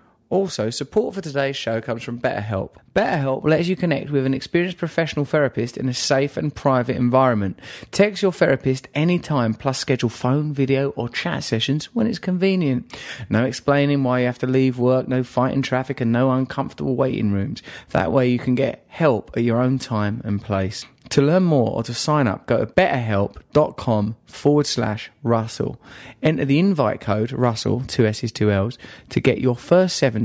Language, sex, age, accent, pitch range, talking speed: English, male, 30-49, British, 105-135 Hz, 185 wpm